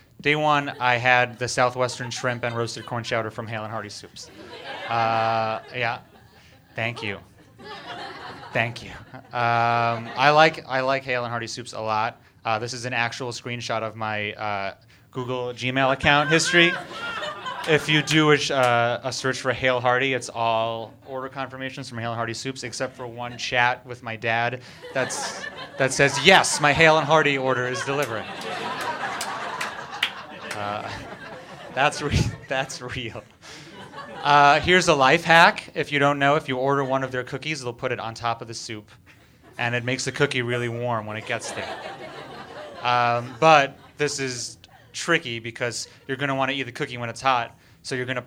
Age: 30-49